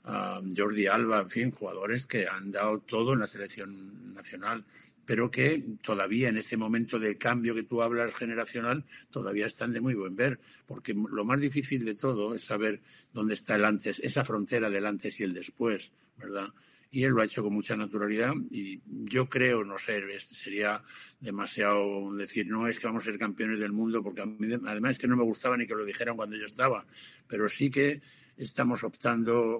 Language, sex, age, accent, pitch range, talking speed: Spanish, male, 60-79, Spanish, 105-120 Hz, 195 wpm